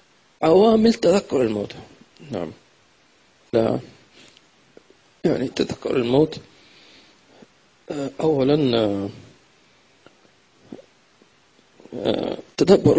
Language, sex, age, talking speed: English, male, 50-69, 45 wpm